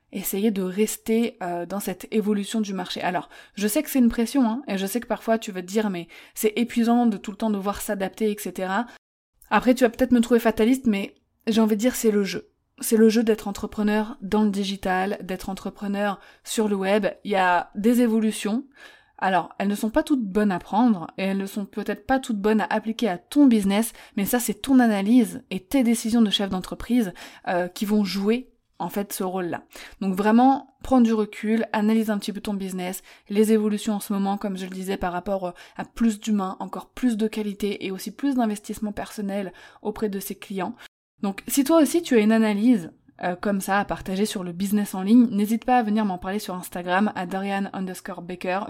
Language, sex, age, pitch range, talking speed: French, female, 20-39, 195-230 Hz, 220 wpm